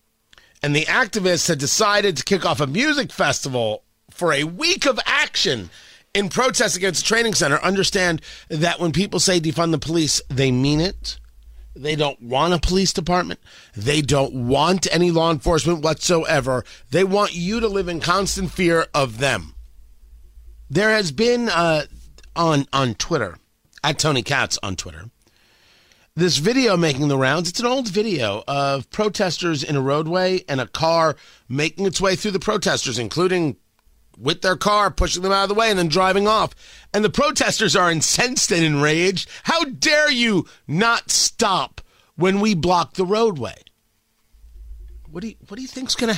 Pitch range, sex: 140-210 Hz, male